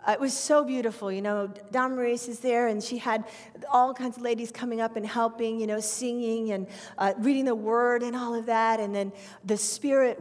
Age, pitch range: 40-59, 210-265 Hz